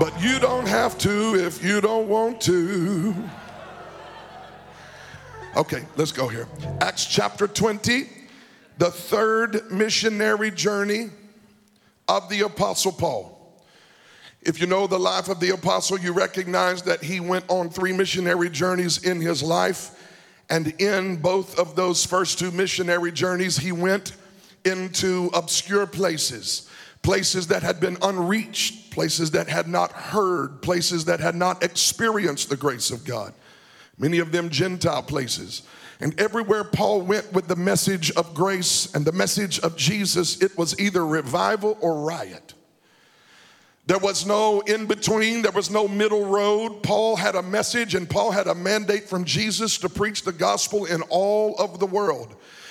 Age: 50-69